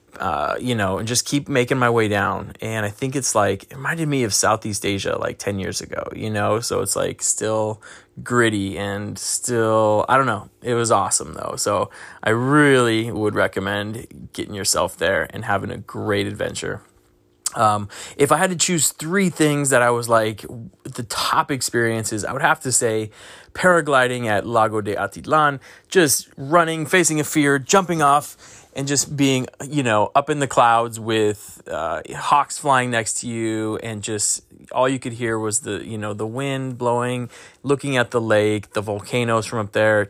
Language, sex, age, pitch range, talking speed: English, male, 20-39, 105-130 Hz, 185 wpm